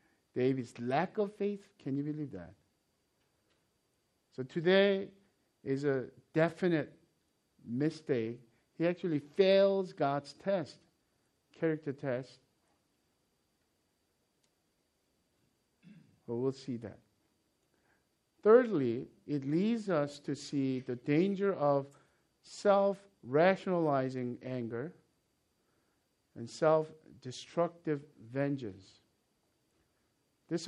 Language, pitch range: English, 125-170 Hz